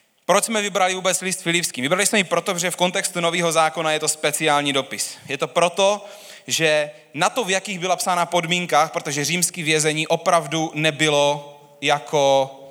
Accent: native